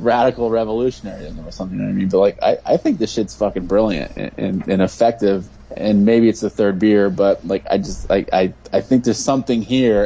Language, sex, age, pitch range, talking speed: English, male, 20-39, 100-120 Hz, 235 wpm